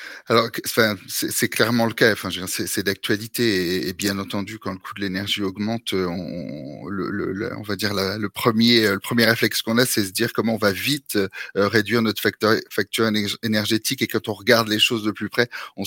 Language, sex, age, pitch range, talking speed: French, male, 30-49, 100-115 Hz, 220 wpm